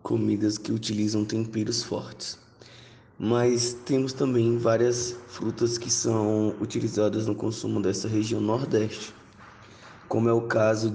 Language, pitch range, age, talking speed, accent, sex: Portuguese, 105-120 Hz, 20-39, 120 wpm, Brazilian, male